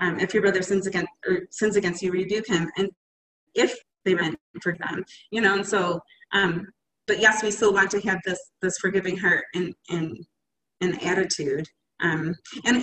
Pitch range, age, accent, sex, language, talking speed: 180-210 Hz, 30-49, American, female, English, 185 wpm